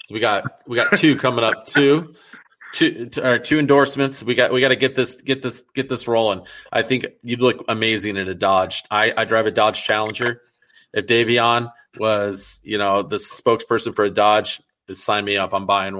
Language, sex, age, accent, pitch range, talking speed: English, male, 30-49, American, 100-125 Hz, 210 wpm